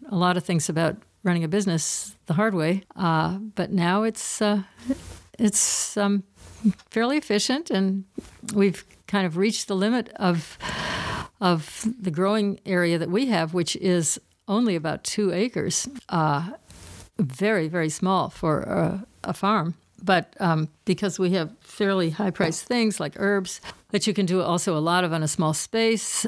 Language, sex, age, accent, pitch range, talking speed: English, female, 60-79, American, 170-205 Hz, 165 wpm